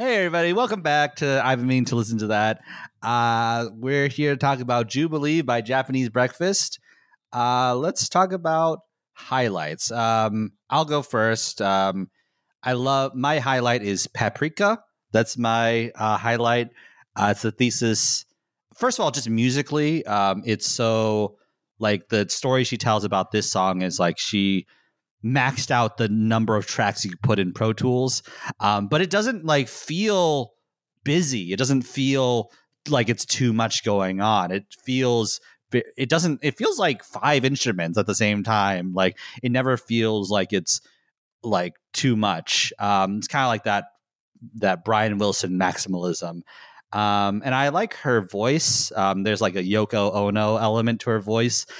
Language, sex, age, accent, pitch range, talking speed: English, male, 30-49, American, 105-135 Hz, 160 wpm